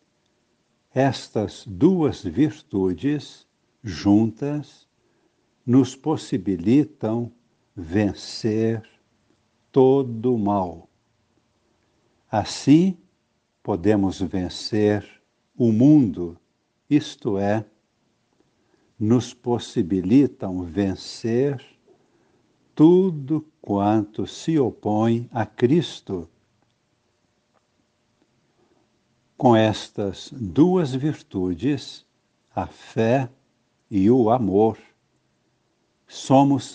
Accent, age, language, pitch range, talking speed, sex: Brazilian, 60-79, Portuguese, 100-130 Hz, 60 wpm, male